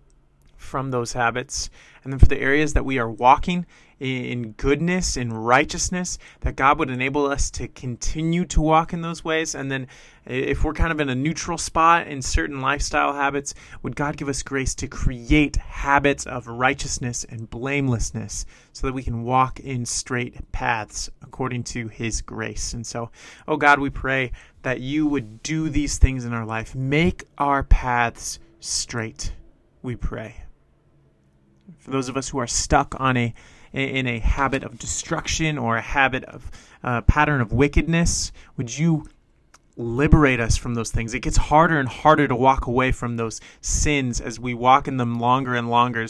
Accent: American